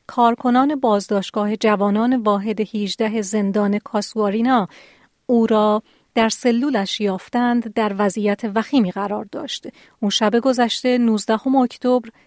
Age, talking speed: 40-59, 110 wpm